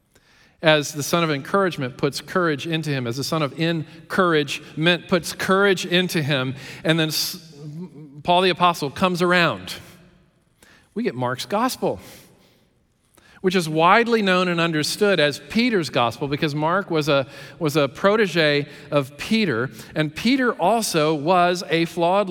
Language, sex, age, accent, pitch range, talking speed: English, male, 40-59, American, 150-195 Hz, 140 wpm